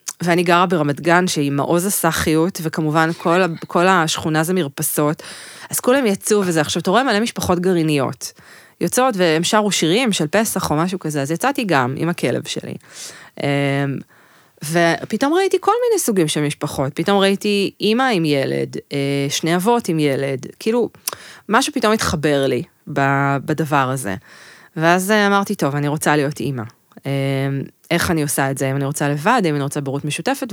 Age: 20-39